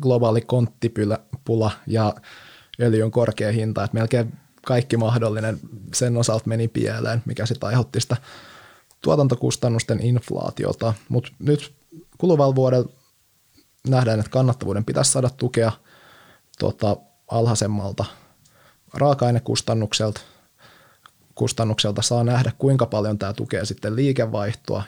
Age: 20-39